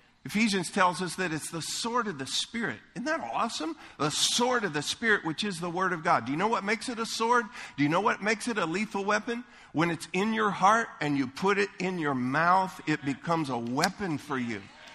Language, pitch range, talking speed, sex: English, 145-195 Hz, 235 wpm, male